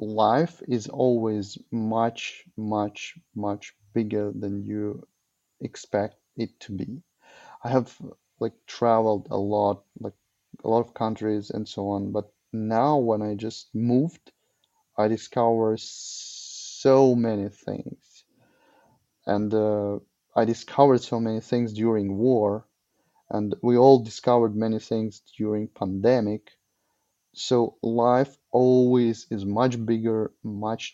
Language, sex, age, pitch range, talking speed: English, male, 30-49, 105-120 Hz, 120 wpm